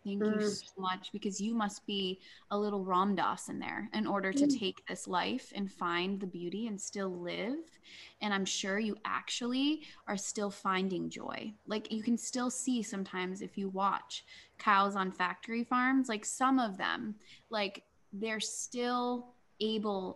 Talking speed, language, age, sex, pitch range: 170 wpm, English, 20-39, female, 185-220 Hz